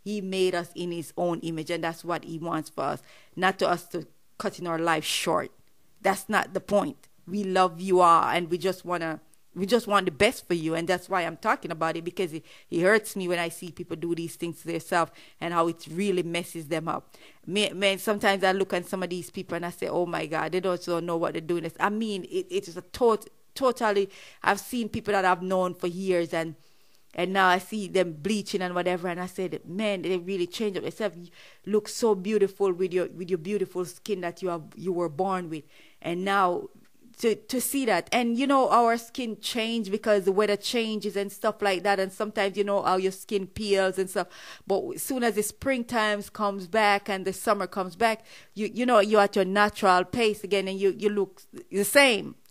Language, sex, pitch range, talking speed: English, female, 175-210 Hz, 230 wpm